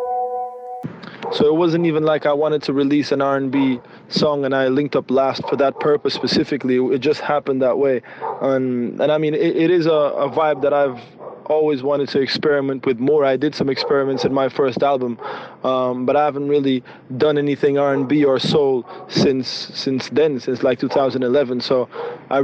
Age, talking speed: 20-39, 185 wpm